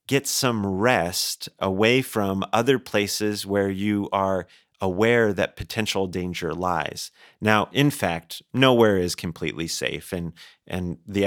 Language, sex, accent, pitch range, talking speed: English, male, American, 95-115 Hz, 135 wpm